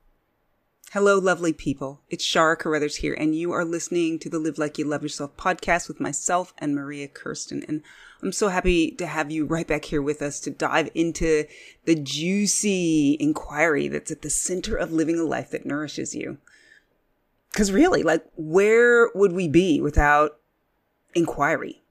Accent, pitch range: American, 155-215 Hz